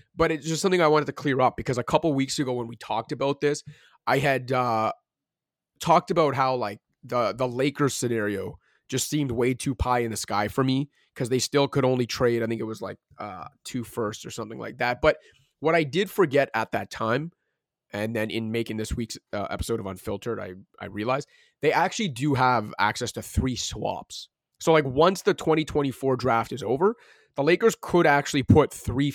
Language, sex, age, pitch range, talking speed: English, male, 20-39, 115-145 Hz, 210 wpm